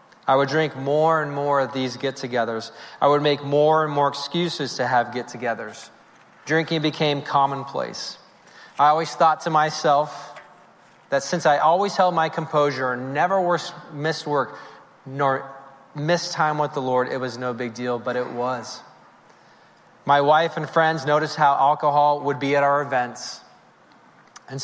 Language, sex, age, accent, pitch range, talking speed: English, male, 30-49, American, 125-155 Hz, 165 wpm